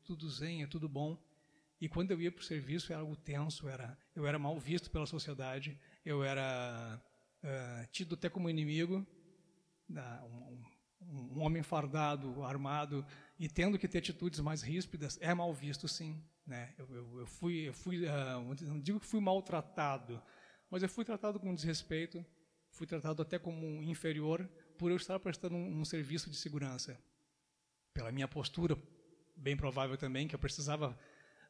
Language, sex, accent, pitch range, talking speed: Portuguese, male, Brazilian, 145-170 Hz, 170 wpm